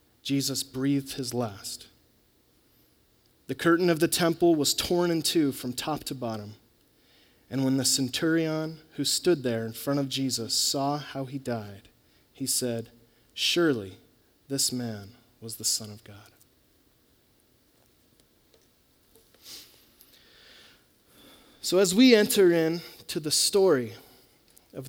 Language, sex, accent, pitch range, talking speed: English, male, American, 125-165 Hz, 125 wpm